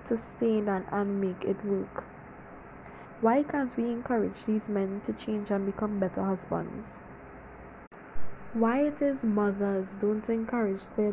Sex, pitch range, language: female, 195-225 Hz, English